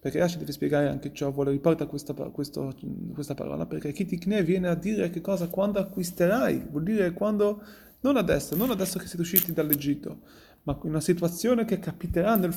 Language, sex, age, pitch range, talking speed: Italian, male, 30-49, 170-205 Hz, 180 wpm